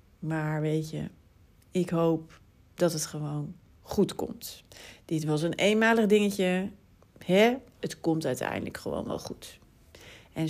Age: 40-59